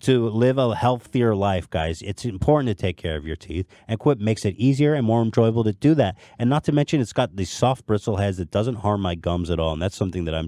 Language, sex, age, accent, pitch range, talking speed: English, male, 30-49, American, 95-130 Hz, 270 wpm